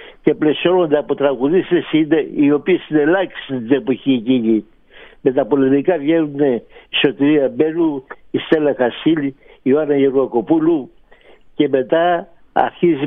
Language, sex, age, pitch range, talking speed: Greek, male, 60-79, 135-160 Hz, 125 wpm